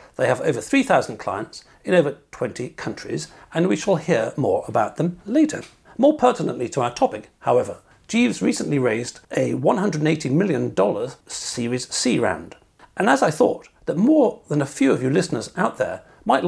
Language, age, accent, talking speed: English, 60-79, British, 170 wpm